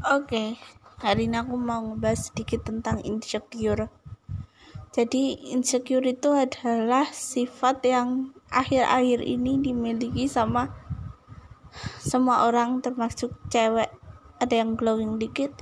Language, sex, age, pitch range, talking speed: Indonesian, female, 20-39, 220-255 Hz, 110 wpm